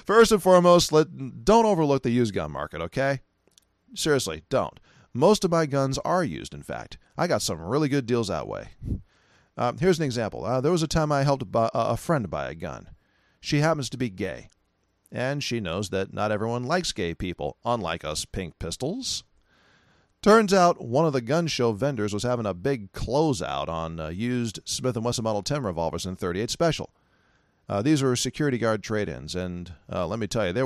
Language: English